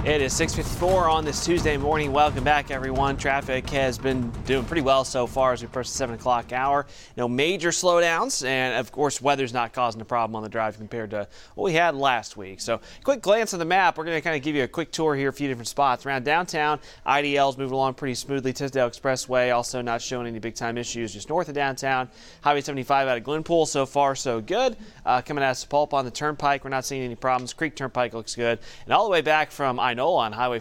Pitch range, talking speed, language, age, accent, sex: 120-150 Hz, 240 wpm, English, 30-49, American, male